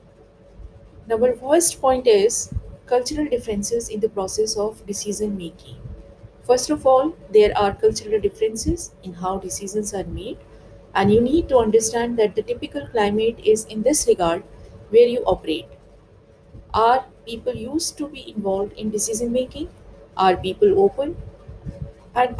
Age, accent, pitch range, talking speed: 50-69, Indian, 200-300 Hz, 140 wpm